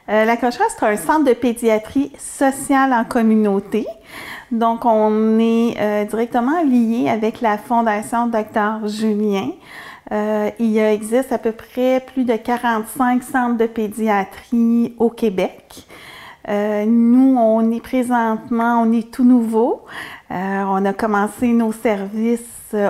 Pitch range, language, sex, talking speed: 215-250 Hz, French, female, 135 wpm